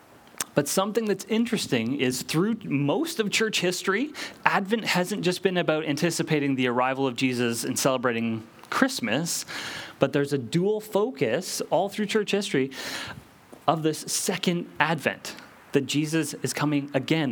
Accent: American